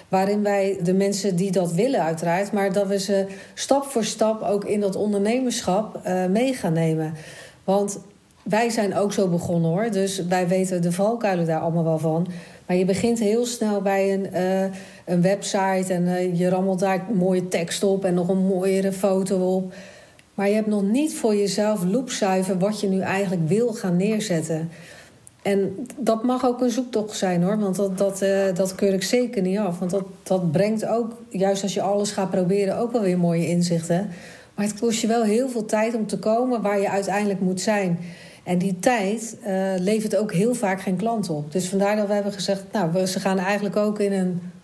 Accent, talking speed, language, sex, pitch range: Dutch, 205 wpm, Dutch, female, 185-215 Hz